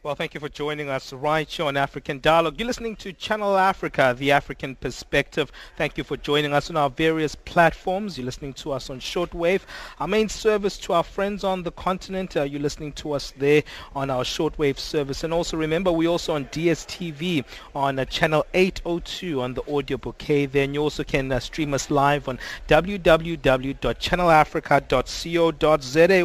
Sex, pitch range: male, 140-170 Hz